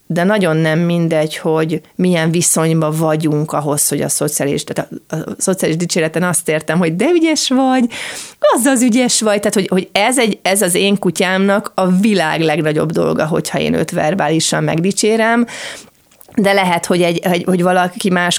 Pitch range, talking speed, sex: 160-200 Hz, 155 wpm, female